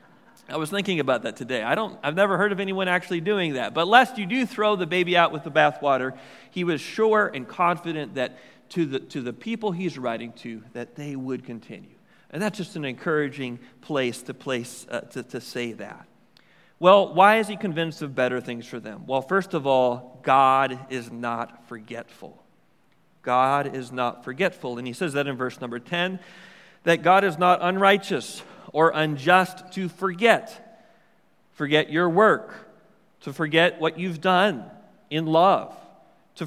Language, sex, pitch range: English, male, 145-195 Hz